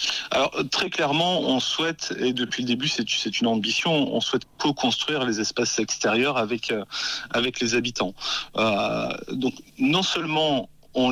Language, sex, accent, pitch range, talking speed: French, male, French, 110-150 Hz, 155 wpm